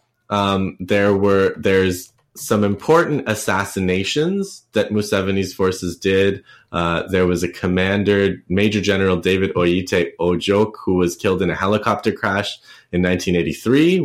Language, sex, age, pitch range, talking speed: English, male, 20-39, 90-105 Hz, 130 wpm